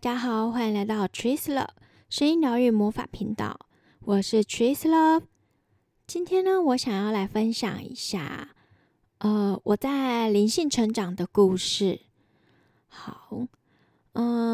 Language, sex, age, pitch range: Chinese, female, 10-29, 200-250 Hz